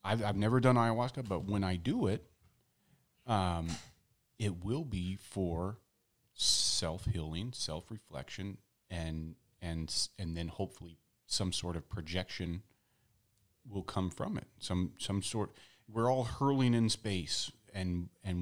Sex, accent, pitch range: male, American, 85-115 Hz